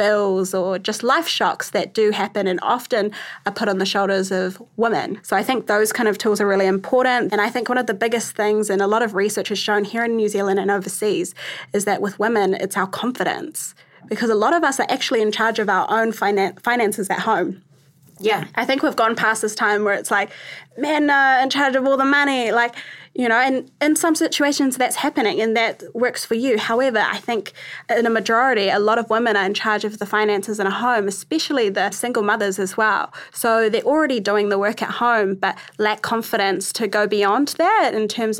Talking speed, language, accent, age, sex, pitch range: 225 wpm, English, Australian, 20-39, female, 205-245 Hz